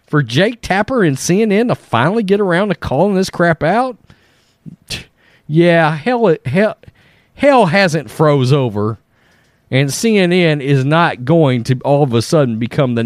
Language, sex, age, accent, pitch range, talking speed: English, male, 40-59, American, 115-185 Hz, 150 wpm